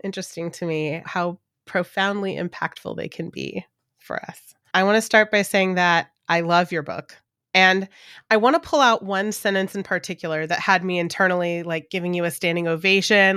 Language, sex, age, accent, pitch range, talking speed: English, female, 30-49, American, 175-220 Hz, 190 wpm